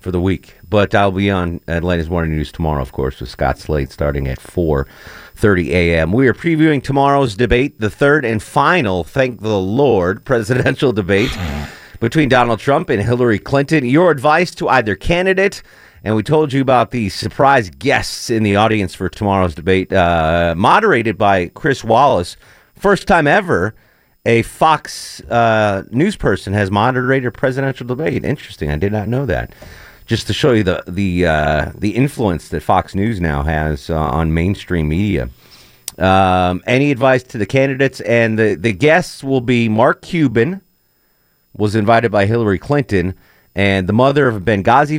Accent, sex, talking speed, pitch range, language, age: American, male, 170 wpm, 90-125 Hz, English, 40-59